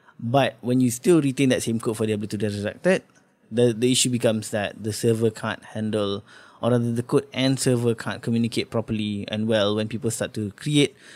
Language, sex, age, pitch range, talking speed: English, male, 20-39, 110-130 Hz, 210 wpm